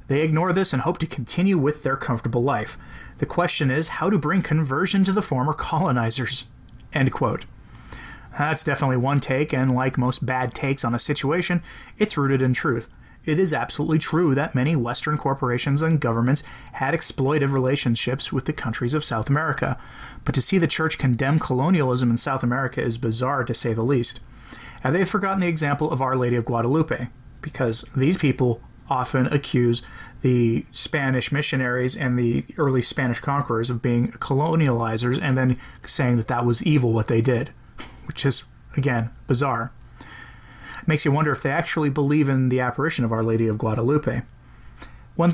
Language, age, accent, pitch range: English, 30-49, American, 120-150 Hz